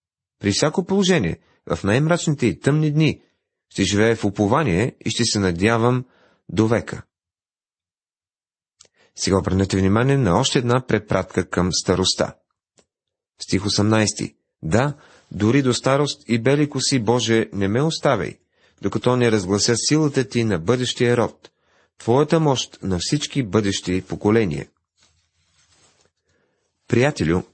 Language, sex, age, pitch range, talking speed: Bulgarian, male, 30-49, 100-135 Hz, 120 wpm